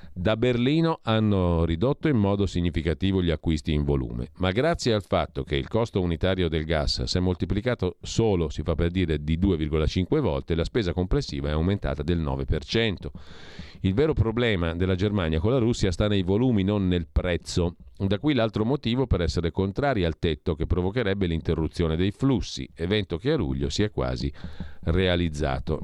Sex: male